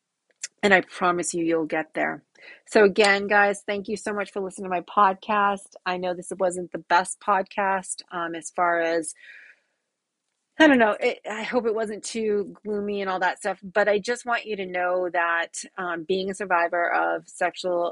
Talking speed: 190 wpm